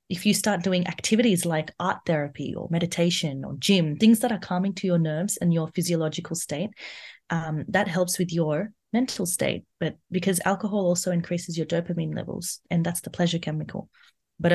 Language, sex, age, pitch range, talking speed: English, female, 20-39, 155-180 Hz, 180 wpm